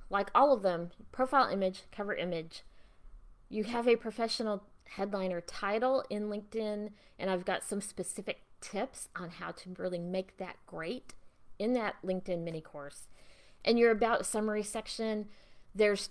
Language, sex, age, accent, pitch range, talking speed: English, female, 30-49, American, 180-225 Hz, 150 wpm